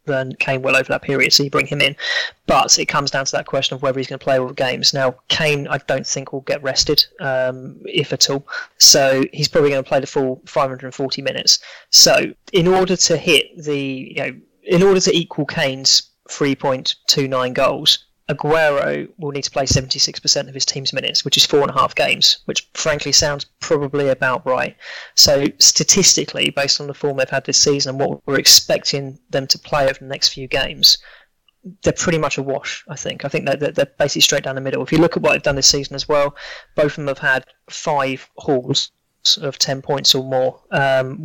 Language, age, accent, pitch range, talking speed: English, 30-49, British, 135-155 Hz, 215 wpm